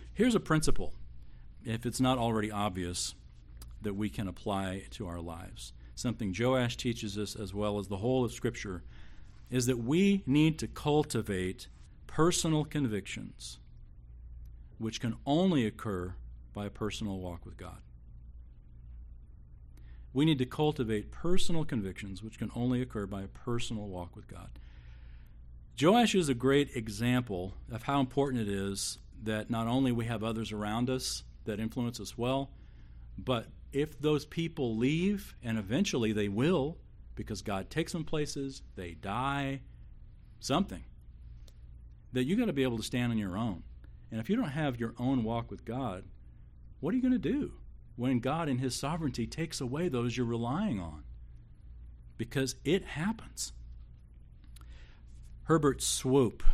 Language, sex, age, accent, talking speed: English, male, 40-59, American, 150 wpm